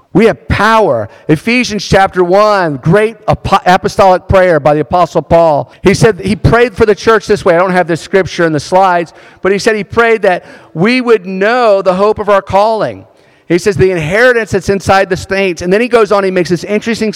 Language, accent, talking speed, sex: English, American, 215 wpm, male